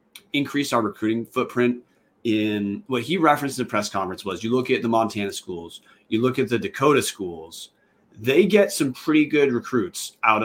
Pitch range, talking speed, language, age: 105-125 Hz, 185 wpm, English, 30-49